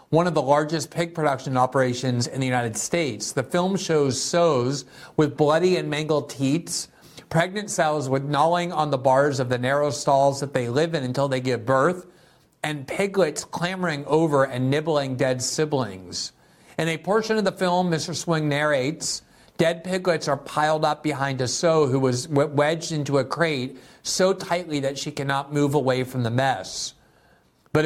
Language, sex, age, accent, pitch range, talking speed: English, male, 50-69, American, 130-160 Hz, 175 wpm